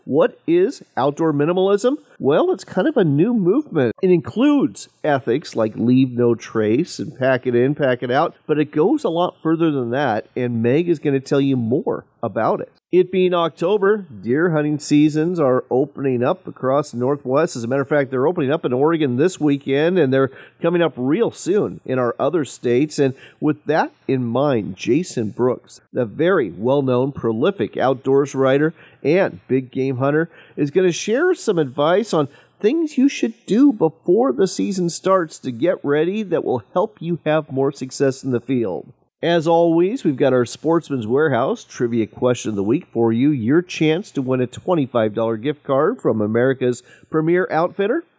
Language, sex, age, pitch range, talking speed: English, male, 40-59, 130-175 Hz, 185 wpm